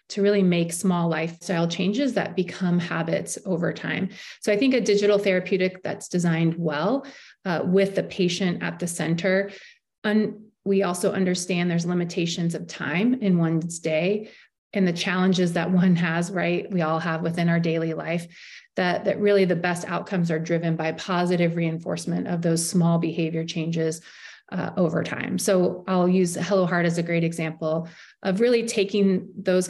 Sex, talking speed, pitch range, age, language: female, 170 wpm, 170-195 Hz, 30-49, English